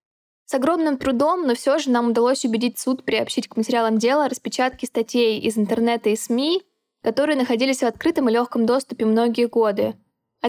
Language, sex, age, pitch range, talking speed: Russian, female, 10-29, 215-255 Hz, 170 wpm